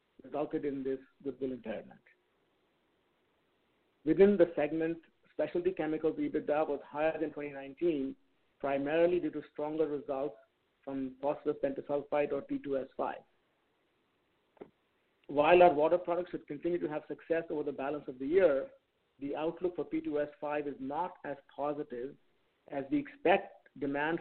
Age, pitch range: 50-69, 140-165 Hz